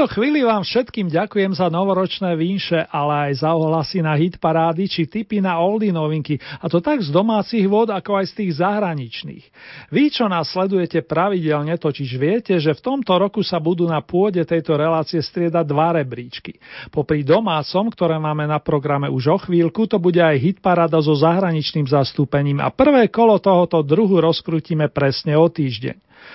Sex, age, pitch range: male, 40-59, 150-195 Hz